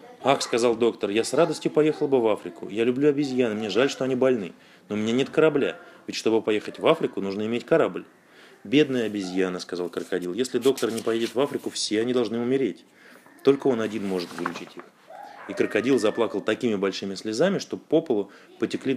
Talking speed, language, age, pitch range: 195 wpm, Russian, 30-49, 105-140 Hz